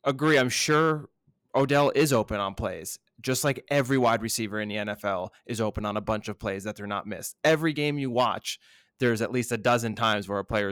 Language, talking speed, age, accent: English, 225 wpm, 20-39, American